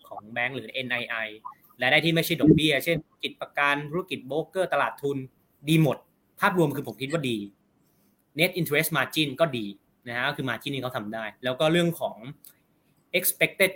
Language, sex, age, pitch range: Thai, male, 20-39, 125-160 Hz